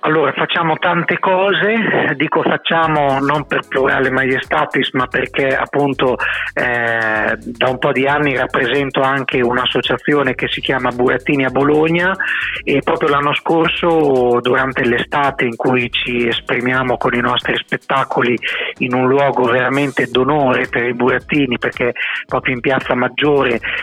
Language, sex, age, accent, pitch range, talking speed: Italian, male, 30-49, native, 125-150 Hz, 140 wpm